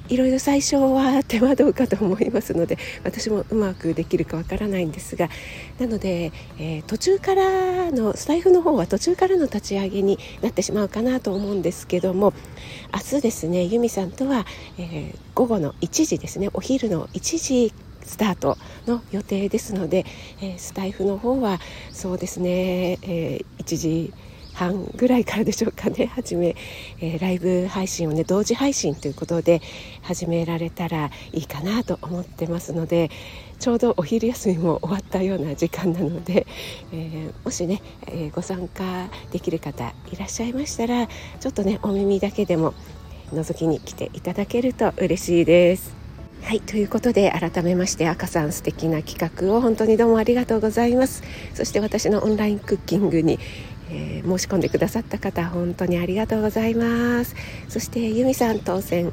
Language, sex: Japanese, female